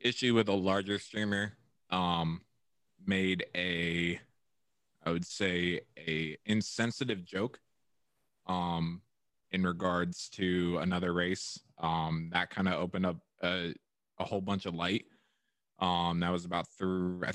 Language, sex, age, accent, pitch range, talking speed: English, male, 20-39, American, 90-105 Hz, 130 wpm